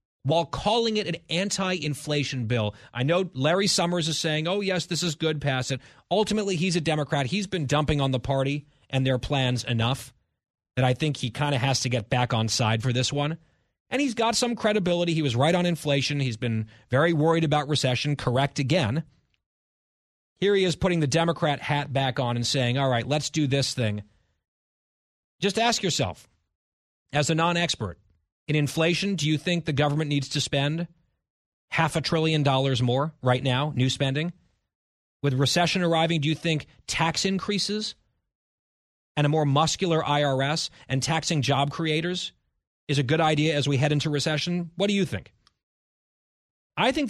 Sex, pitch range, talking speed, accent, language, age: male, 125-165 Hz, 180 wpm, American, English, 30-49